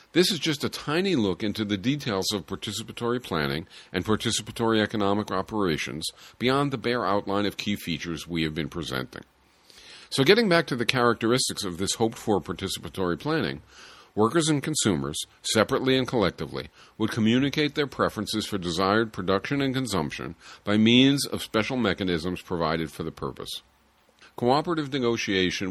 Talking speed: 150 wpm